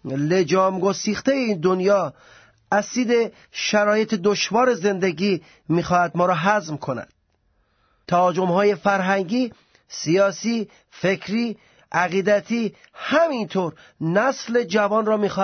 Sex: male